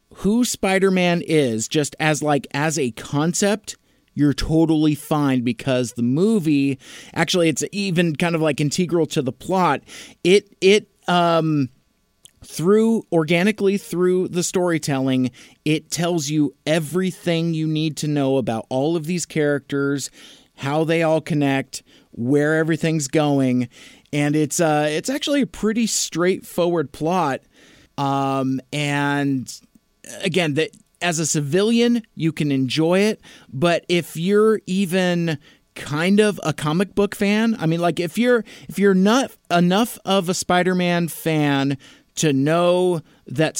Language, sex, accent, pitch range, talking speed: English, male, American, 145-185 Hz, 135 wpm